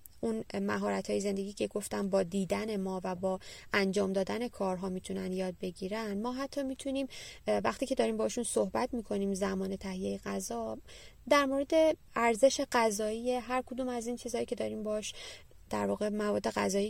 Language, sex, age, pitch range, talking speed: Persian, female, 20-39, 195-240 Hz, 155 wpm